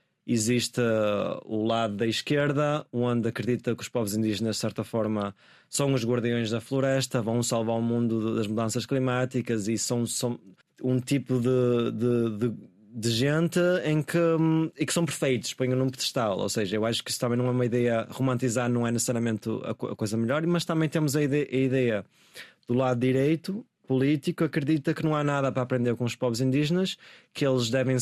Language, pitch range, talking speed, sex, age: Portuguese, 115-135 Hz, 195 wpm, male, 20-39